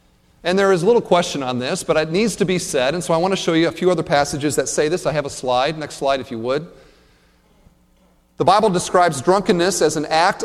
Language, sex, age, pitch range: English, male, 40-59, 150-215 Hz